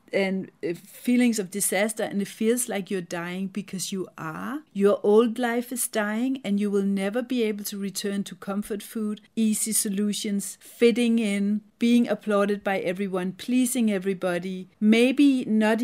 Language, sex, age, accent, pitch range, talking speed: English, female, 40-59, Danish, 190-220 Hz, 155 wpm